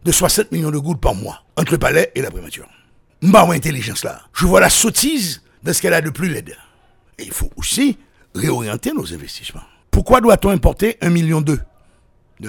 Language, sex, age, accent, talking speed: French, male, 60-79, French, 185 wpm